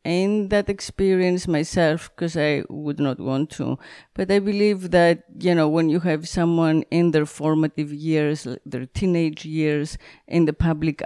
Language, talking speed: English, 165 wpm